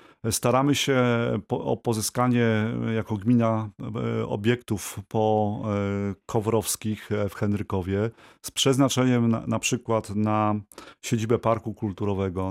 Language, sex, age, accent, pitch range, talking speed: Polish, male, 30-49, native, 105-120 Hz, 95 wpm